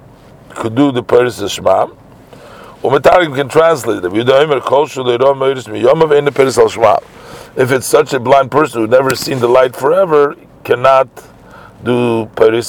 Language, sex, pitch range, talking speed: English, male, 105-145 Hz, 125 wpm